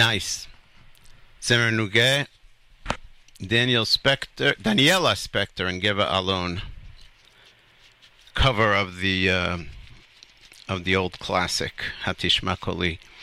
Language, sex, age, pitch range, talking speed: English, male, 50-69, 95-135 Hz, 85 wpm